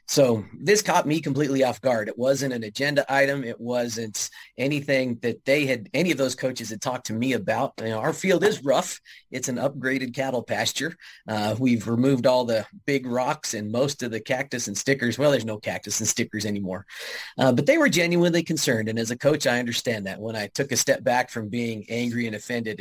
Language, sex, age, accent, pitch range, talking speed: English, male, 30-49, American, 110-135 Hz, 215 wpm